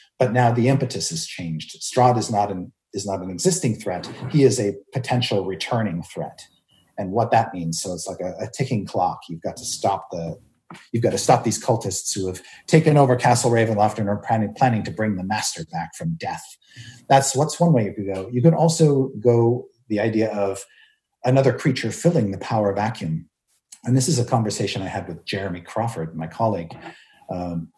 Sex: male